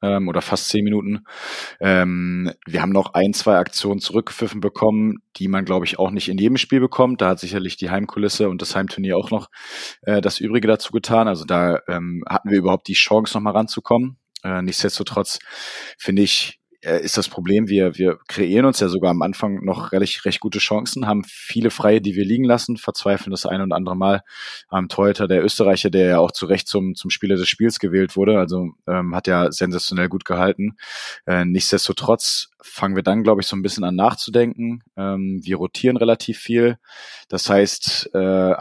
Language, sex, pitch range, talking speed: German, male, 90-105 Hz, 185 wpm